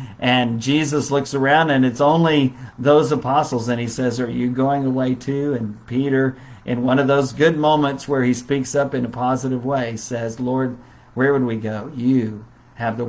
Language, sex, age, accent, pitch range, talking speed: English, male, 50-69, American, 120-145 Hz, 195 wpm